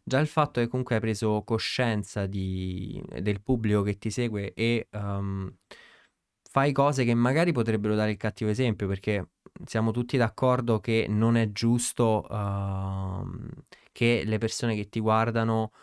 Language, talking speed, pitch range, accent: Italian, 155 wpm, 100-115 Hz, native